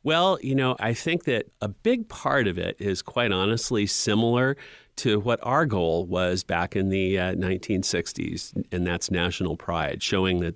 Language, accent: English, American